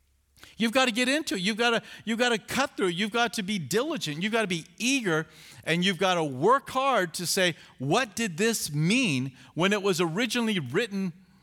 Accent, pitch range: American, 145-215 Hz